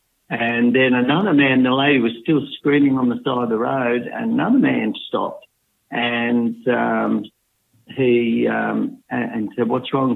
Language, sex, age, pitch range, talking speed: English, male, 60-79, 120-155 Hz, 160 wpm